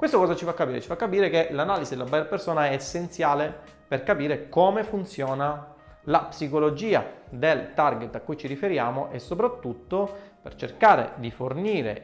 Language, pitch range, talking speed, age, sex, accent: Italian, 130-180 Hz, 165 wpm, 30-49, male, native